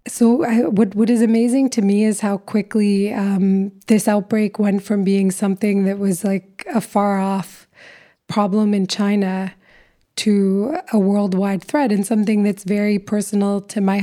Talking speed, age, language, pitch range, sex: 165 wpm, 20-39, English, 195-220 Hz, female